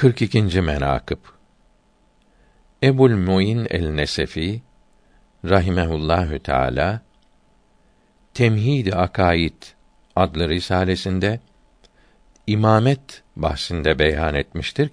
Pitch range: 80-110 Hz